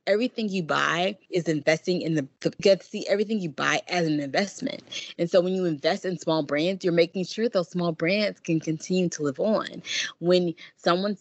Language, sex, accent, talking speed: English, female, American, 200 wpm